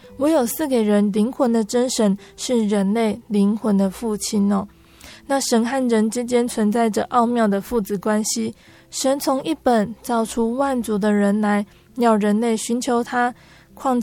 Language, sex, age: Chinese, female, 20-39